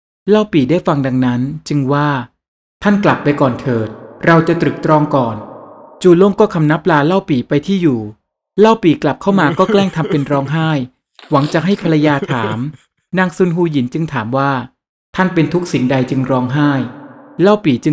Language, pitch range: Thai, 135-175 Hz